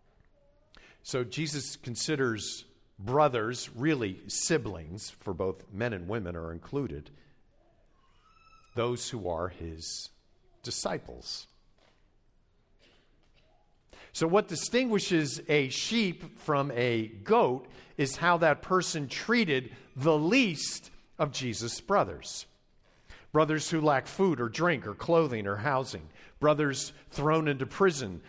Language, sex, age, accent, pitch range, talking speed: English, male, 50-69, American, 125-160 Hz, 105 wpm